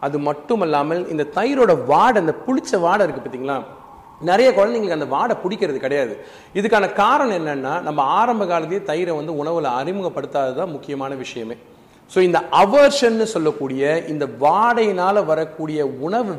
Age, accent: 40-59, native